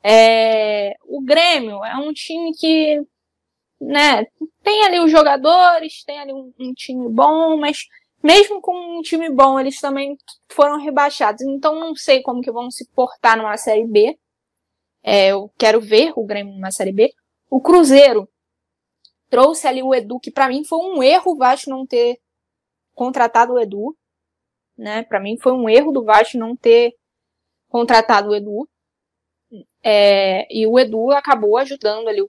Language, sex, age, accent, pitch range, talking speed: Portuguese, female, 10-29, Brazilian, 220-295 Hz, 160 wpm